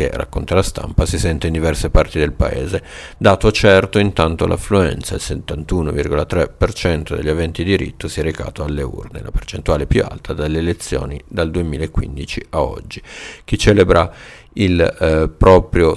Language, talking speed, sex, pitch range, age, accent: Italian, 150 wpm, male, 80-95 Hz, 50-69, native